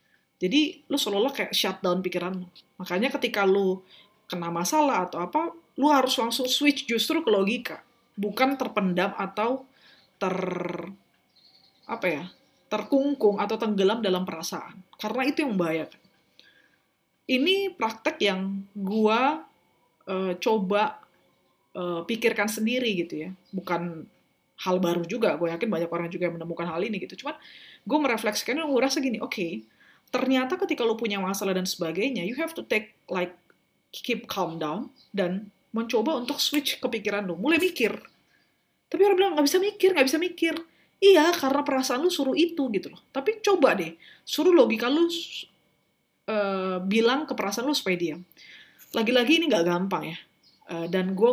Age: 20-39